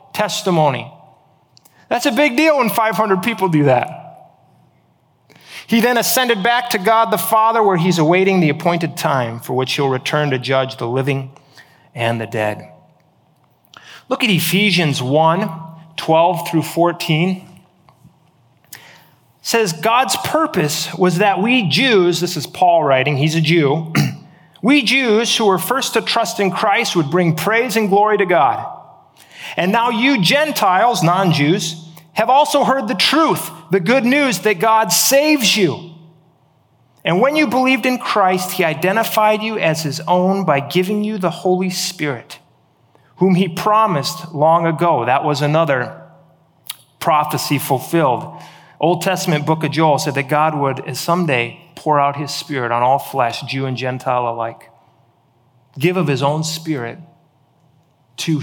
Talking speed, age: 150 wpm, 30-49